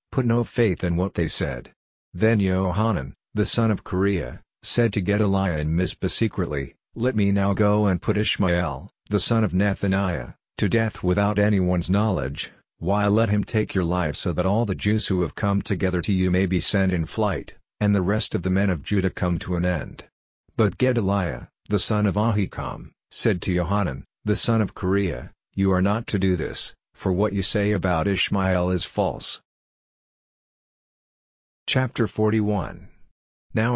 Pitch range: 90-105 Hz